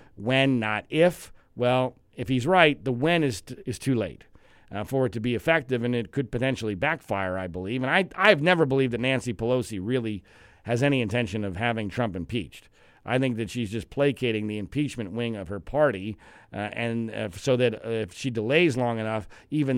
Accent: American